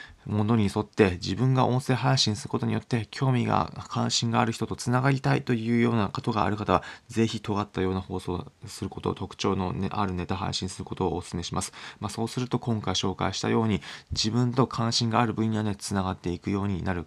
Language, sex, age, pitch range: Japanese, male, 20-39, 95-120 Hz